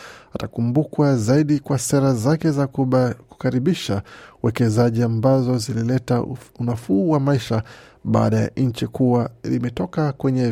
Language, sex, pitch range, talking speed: Swahili, male, 120-140 Hz, 105 wpm